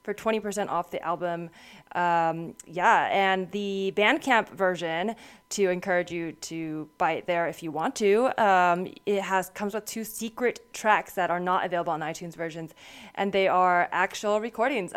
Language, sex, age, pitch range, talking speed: English, female, 20-39, 170-210 Hz, 170 wpm